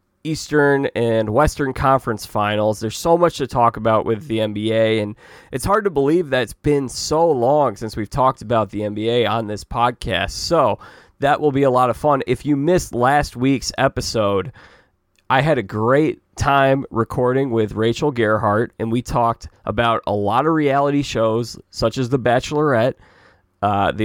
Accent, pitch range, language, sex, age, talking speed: American, 110-140 Hz, English, male, 20-39, 175 wpm